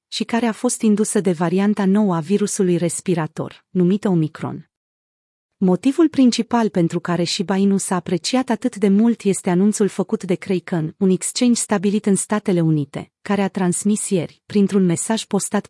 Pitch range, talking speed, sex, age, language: 180-220 Hz, 160 wpm, female, 30-49, Romanian